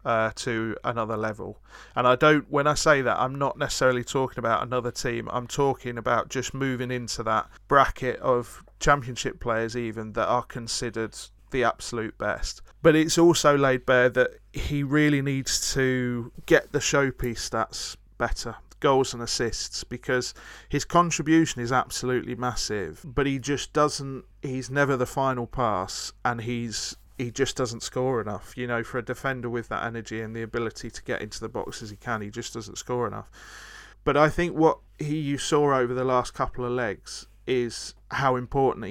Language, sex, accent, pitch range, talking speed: English, male, British, 115-135 Hz, 180 wpm